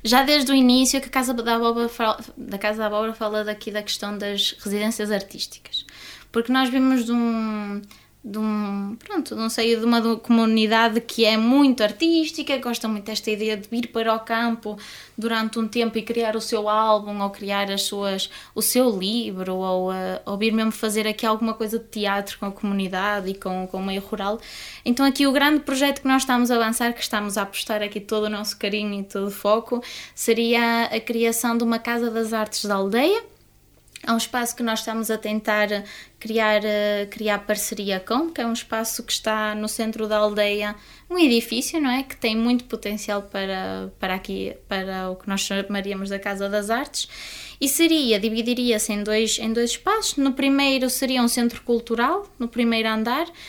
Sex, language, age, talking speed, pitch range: female, Portuguese, 20-39, 190 wpm, 205-240 Hz